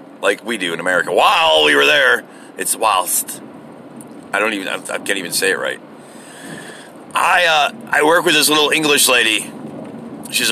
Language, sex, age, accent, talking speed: English, male, 40-59, American, 170 wpm